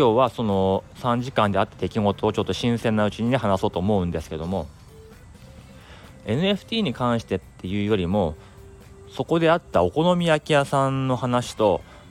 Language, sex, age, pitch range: Japanese, male, 30-49, 95-125 Hz